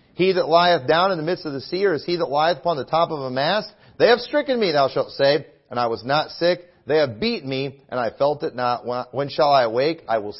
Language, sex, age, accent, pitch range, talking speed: English, male, 40-59, American, 135-200 Hz, 275 wpm